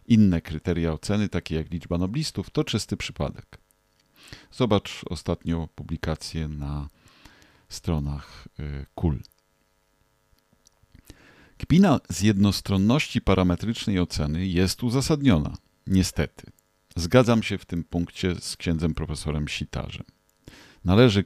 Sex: male